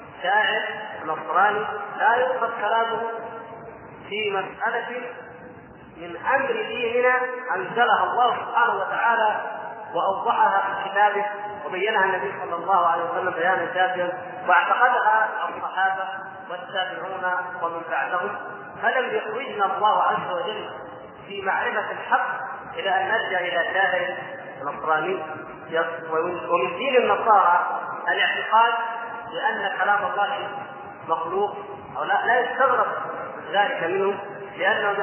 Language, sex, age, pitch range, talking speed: Arabic, male, 30-49, 175-230 Hz, 100 wpm